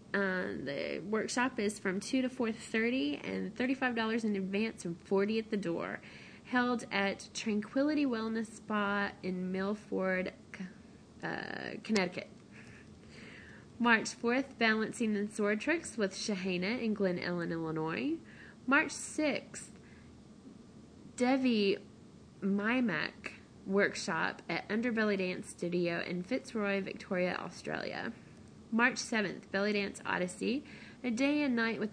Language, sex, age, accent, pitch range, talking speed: English, female, 20-39, American, 190-230 Hz, 120 wpm